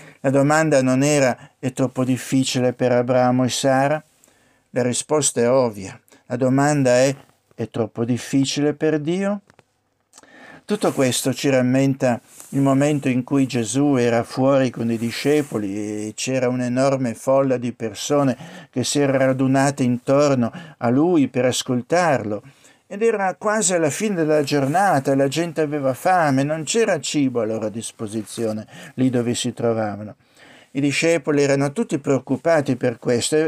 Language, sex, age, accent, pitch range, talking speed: Italian, male, 60-79, native, 120-145 Hz, 145 wpm